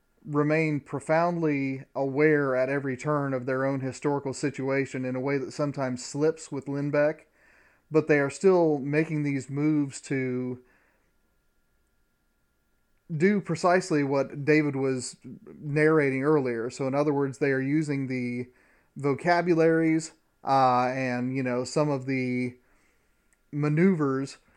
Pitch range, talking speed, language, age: 130-150 Hz, 125 wpm, English, 30-49